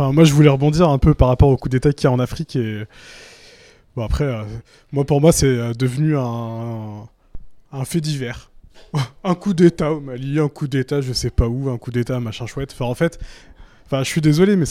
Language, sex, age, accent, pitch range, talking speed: French, male, 20-39, French, 125-150 Hz, 230 wpm